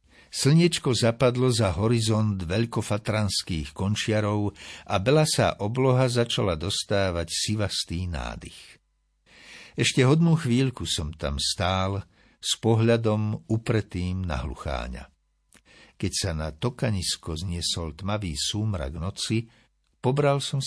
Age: 60-79